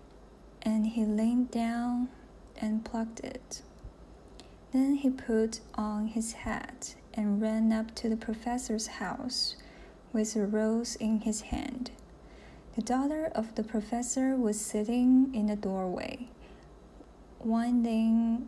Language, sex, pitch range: Chinese, female, 220-265 Hz